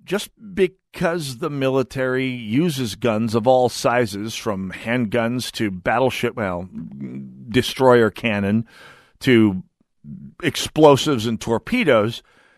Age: 50-69